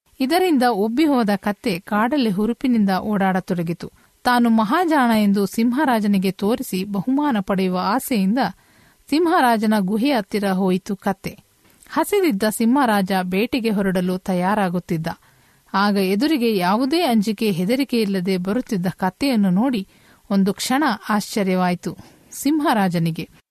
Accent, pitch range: native, 190-240 Hz